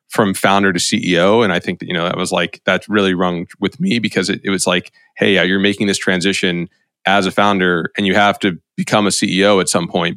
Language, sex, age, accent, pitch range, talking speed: English, male, 20-39, American, 95-105 Hz, 240 wpm